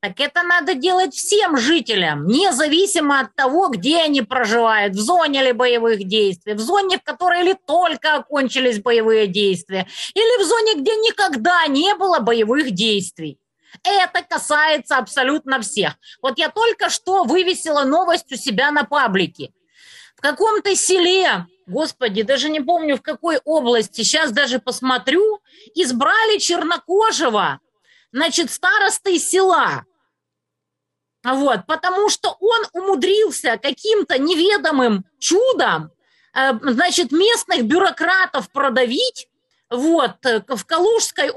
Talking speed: 120 wpm